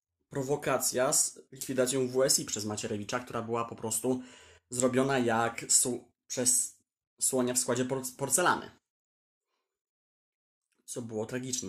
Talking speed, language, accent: 115 wpm, Polish, native